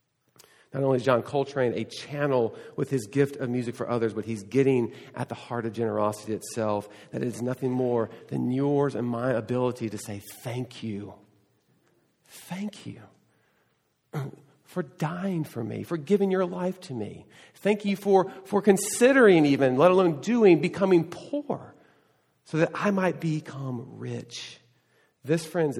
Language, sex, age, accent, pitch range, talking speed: English, male, 40-59, American, 115-145 Hz, 160 wpm